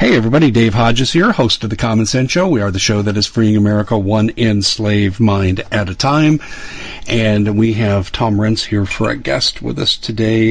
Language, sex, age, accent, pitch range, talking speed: English, male, 50-69, American, 105-115 Hz, 210 wpm